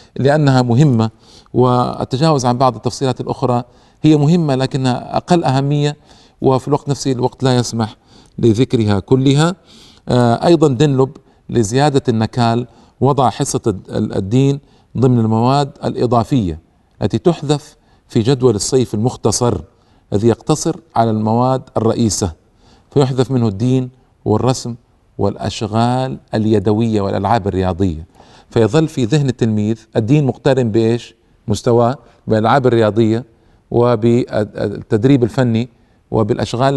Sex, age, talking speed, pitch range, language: male, 50-69, 100 wpm, 110-130 Hz, Arabic